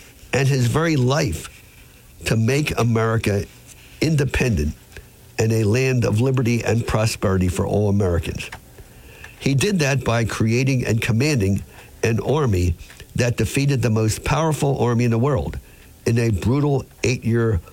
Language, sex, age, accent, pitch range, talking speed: English, male, 50-69, American, 95-130 Hz, 135 wpm